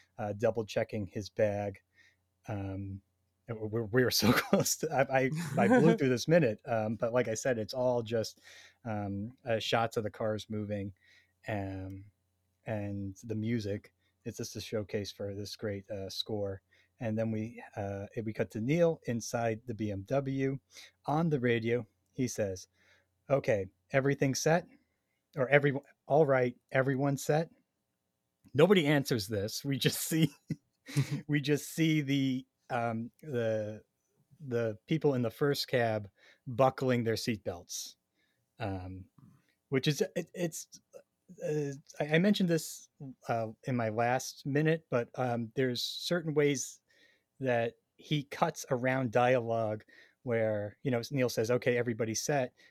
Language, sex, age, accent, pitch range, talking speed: English, male, 30-49, American, 105-140 Hz, 145 wpm